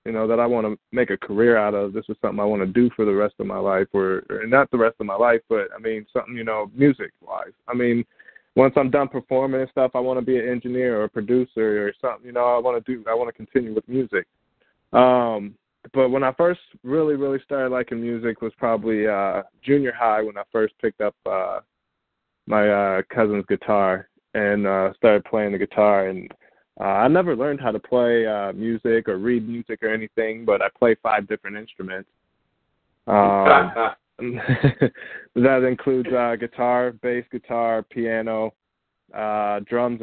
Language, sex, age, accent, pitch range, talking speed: English, male, 20-39, American, 105-125 Hz, 200 wpm